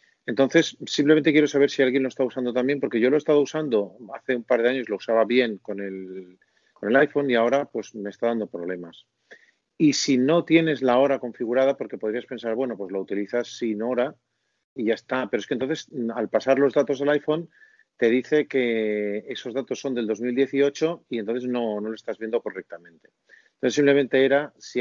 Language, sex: Spanish, male